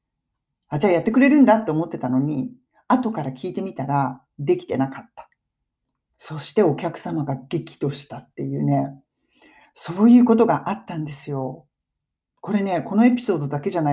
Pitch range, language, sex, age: 145-230 Hz, Japanese, male, 40-59